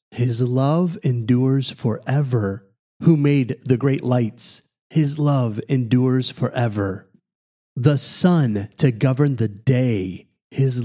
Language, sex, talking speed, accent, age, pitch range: English, male, 110 wpm, American, 30-49, 115-140 Hz